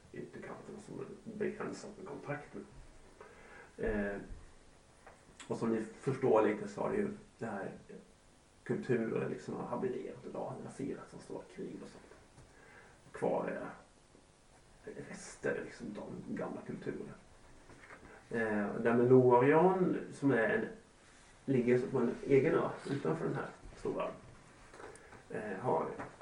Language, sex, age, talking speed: Swedish, male, 40-59, 125 wpm